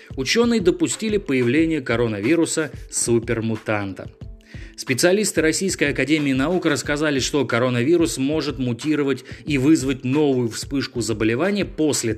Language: Russian